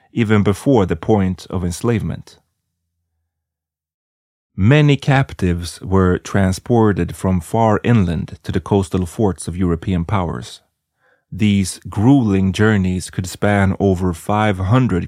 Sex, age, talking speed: male, 30-49, 105 wpm